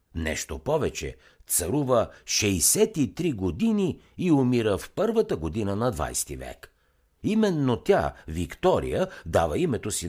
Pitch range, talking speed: 75-130 Hz, 120 wpm